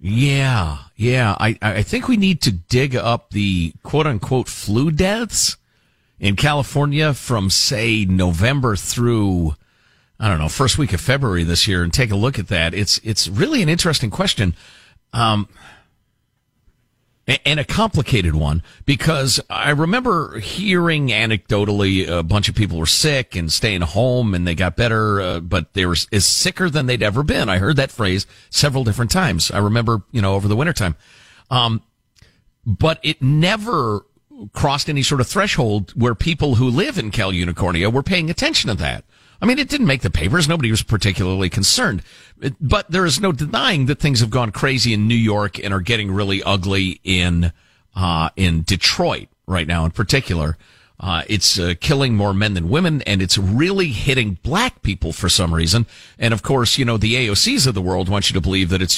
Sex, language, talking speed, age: male, English, 185 wpm, 50-69